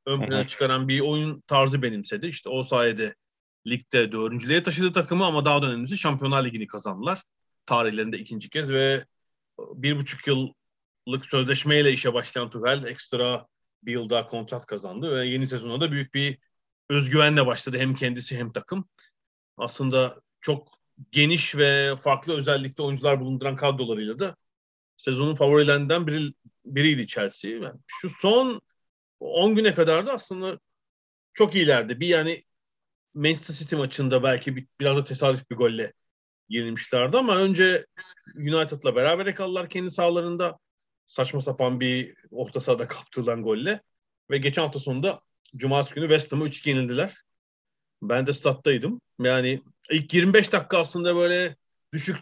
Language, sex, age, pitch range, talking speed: Turkish, male, 40-59, 130-170 Hz, 135 wpm